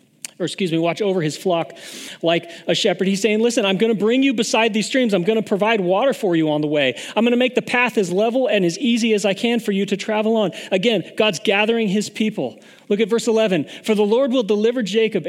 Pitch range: 175-220 Hz